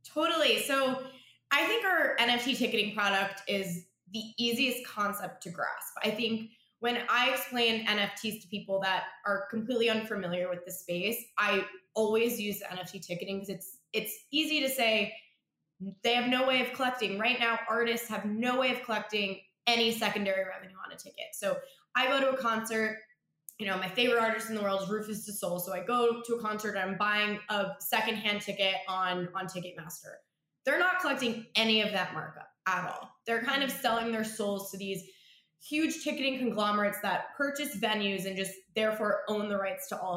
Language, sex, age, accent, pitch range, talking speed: English, female, 20-39, American, 190-235 Hz, 185 wpm